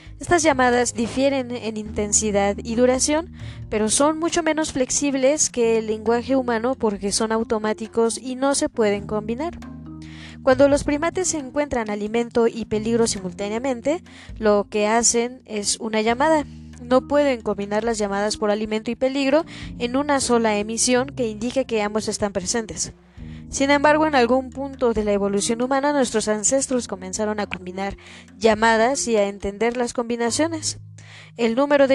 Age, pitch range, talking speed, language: 20-39, 210-260 Hz, 150 wpm, Spanish